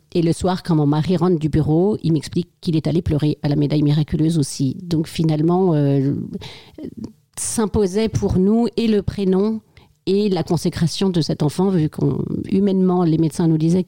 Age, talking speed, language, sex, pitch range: 40-59, 175 wpm, French, female, 155-185 Hz